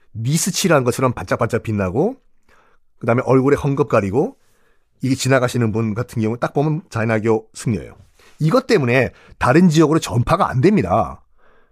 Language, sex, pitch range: Korean, male, 120-195 Hz